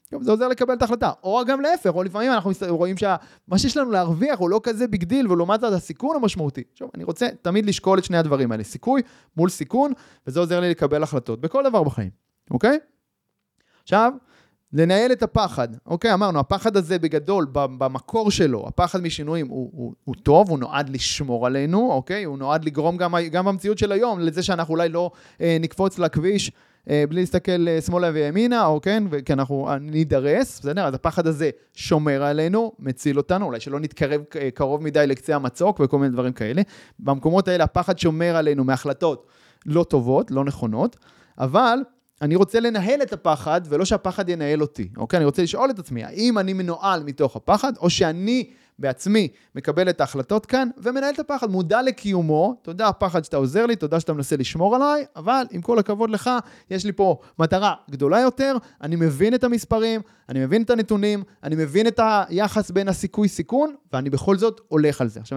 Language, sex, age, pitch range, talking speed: Hebrew, male, 30-49, 145-215 Hz, 180 wpm